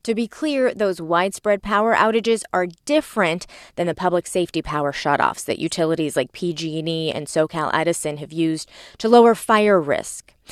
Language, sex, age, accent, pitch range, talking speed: English, female, 20-39, American, 160-215 Hz, 160 wpm